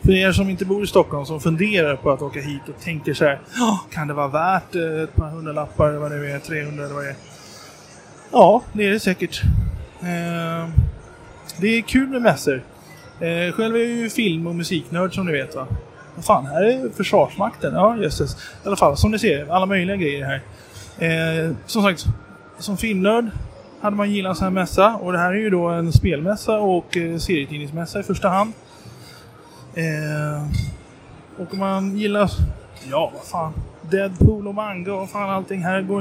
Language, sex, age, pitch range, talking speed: Swedish, male, 20-39, 150-195 Hz, 185 wpm